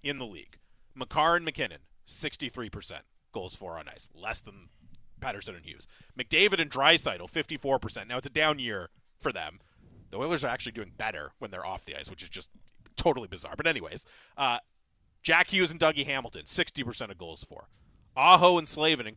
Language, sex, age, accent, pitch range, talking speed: English, male, 30-49, American, 130-175 Hz, 185 wpm